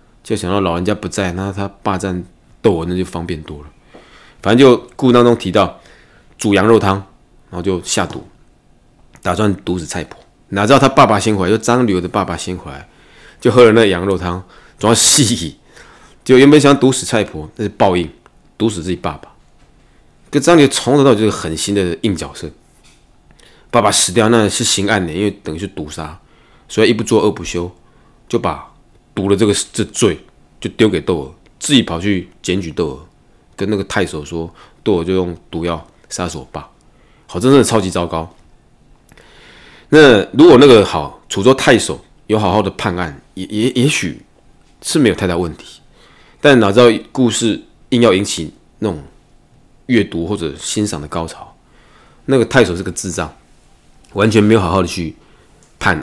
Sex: male